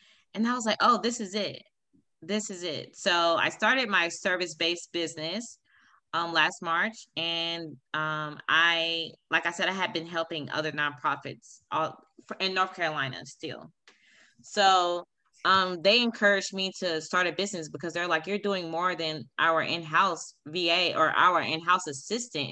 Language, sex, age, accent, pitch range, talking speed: English, female, 20-39, American, 150-185 Hz, 155 wpm